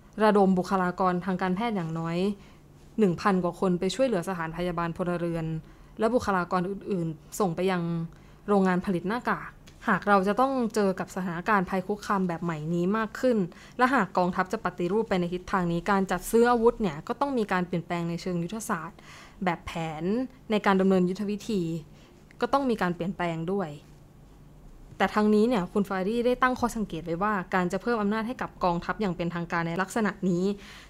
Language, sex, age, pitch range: Thai, female, 20-39, 180-220 Hz